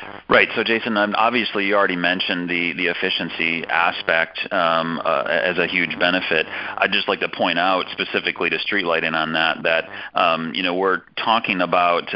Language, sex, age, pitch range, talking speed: English, male, 40-59, 80-95 Hz, 180 wpm